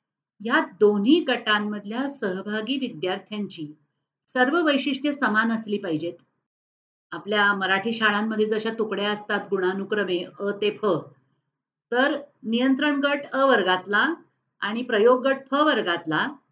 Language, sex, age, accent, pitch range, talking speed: Marathi, female, 50-69, native, 180-260 Hz, 110 wpm